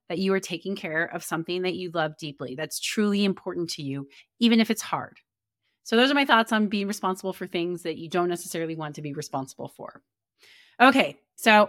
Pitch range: 165-205 Hz